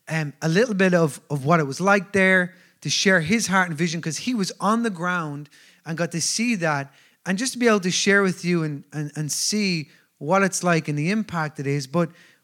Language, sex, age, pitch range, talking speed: English, male, 30-49, 140-185 Hz, 240 wpm